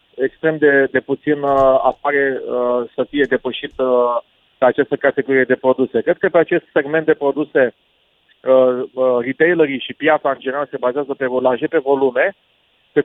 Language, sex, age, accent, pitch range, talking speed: Romanian, male, 40-59, native, 130-170 Hz, 165 wpm